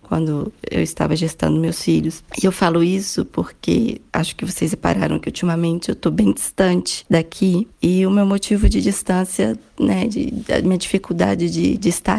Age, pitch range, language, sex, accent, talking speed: 20-39, 165-190 Hz, Portuguese, female, Brazilian, 175 wpm